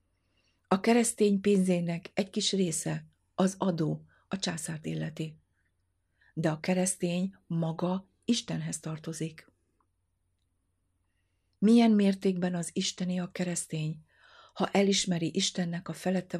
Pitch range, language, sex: 160-190 Hz, Hungarian, female